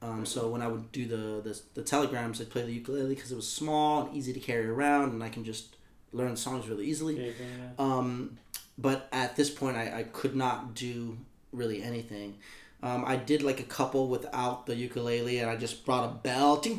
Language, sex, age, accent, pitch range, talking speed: English, male, 20-39, American, 115-135 Hz, 210 wpm